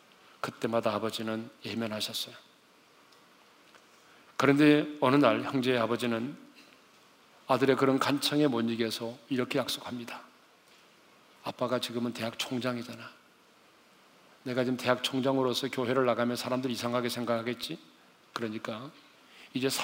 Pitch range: 115-135 Hz